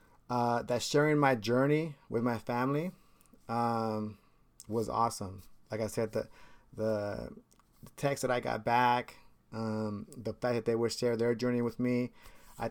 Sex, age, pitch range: male, 30-49, 110-130 Hz